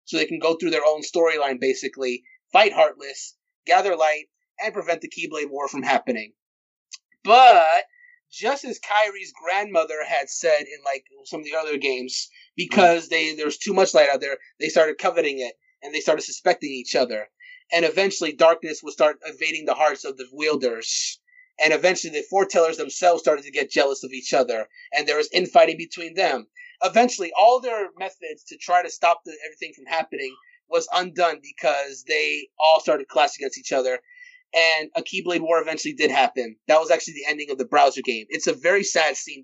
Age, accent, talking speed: 30-49, American, 190 wpm